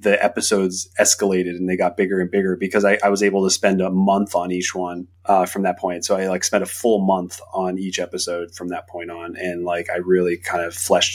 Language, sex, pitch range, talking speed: English, male, 90-105 Hz, 250 wpm